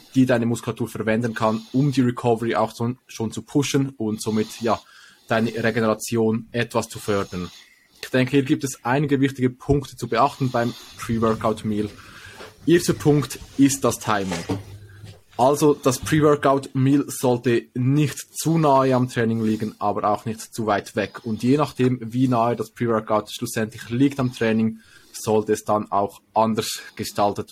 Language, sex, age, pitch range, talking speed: German, male, 20-39, 110-125 Hz, 155 wpm